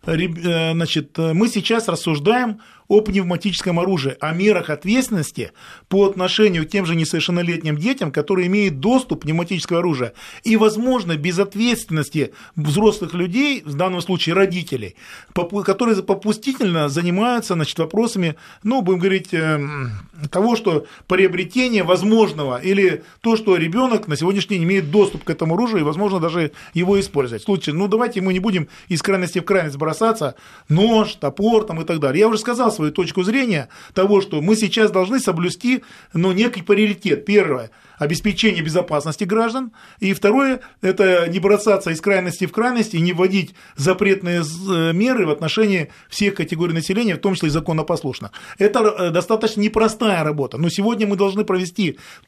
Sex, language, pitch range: male, Russian, 165-210 Hz